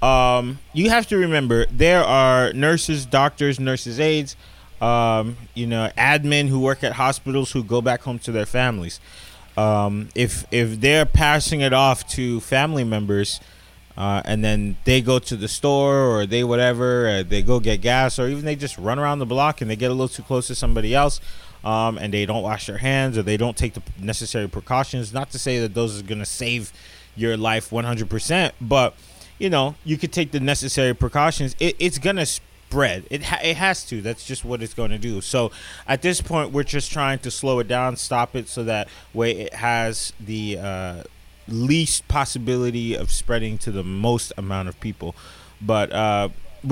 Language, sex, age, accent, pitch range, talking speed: English, male, 20-39, American, 110-135 Hz, 200 wpm